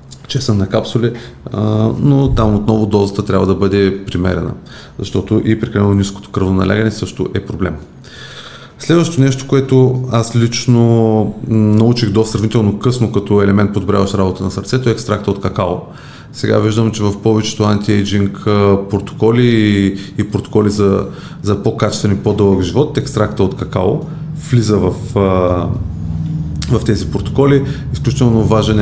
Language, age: Bulgarian, 30-49